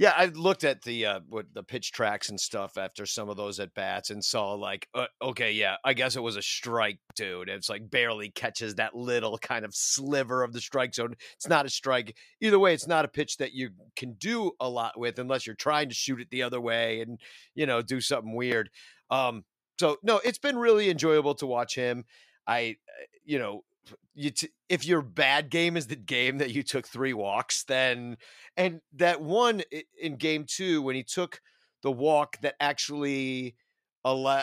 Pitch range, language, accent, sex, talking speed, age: 120-165 Hz, English, American, male, 205 wpm, 40-59